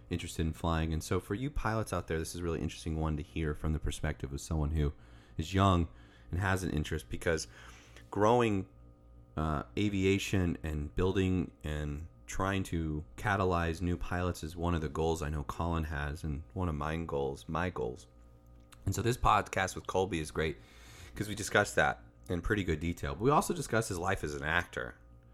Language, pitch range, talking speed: English, 70-85 Hz, 195 wpm